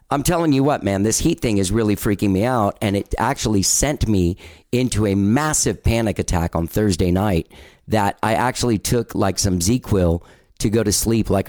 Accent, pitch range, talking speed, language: American, 95-115 Hz, 200 wpm, English